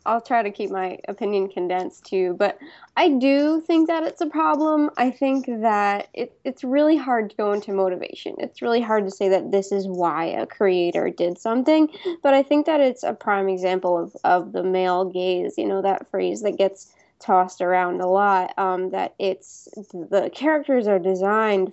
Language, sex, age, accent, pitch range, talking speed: English, female, 10-29, American, 185-265 Hz, 195 wpm